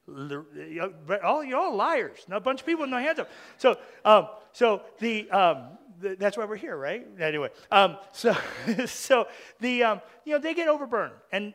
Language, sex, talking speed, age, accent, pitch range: English, male, 185 wpm, 40-59, American, 165-230 Hz